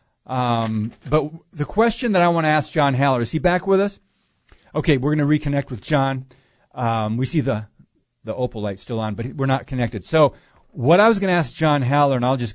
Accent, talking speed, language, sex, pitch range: American, 230 wpm, English, male, 120-155 Hz